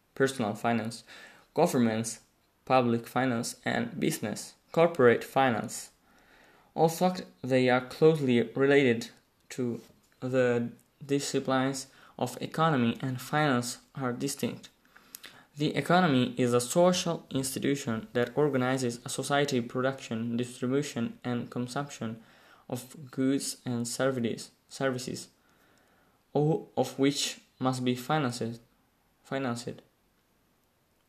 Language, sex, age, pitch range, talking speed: Italian, male, 20-39, 125-150 Hz, 95 wpm